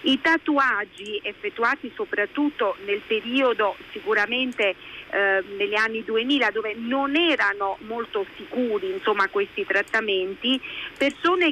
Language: Italian